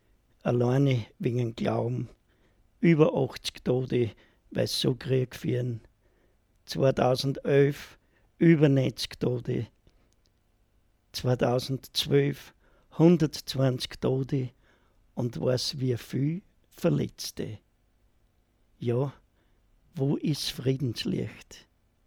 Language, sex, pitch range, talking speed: German, male, 115-160 Hz, 70 wpm